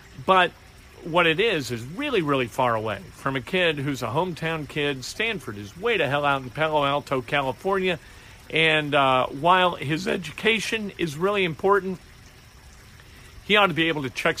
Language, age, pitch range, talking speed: English, 50-69, 125-175 Hz, 170 wpm